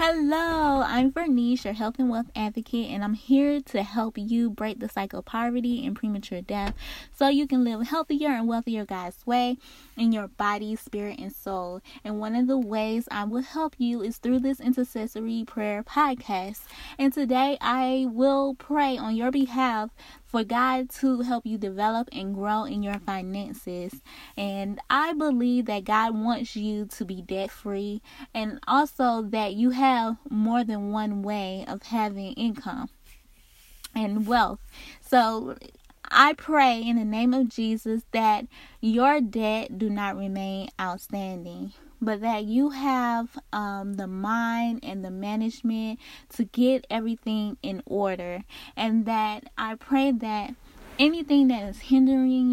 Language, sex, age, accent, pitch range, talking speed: English, female, 20-39, American, 210-260 Hz, 155 wpm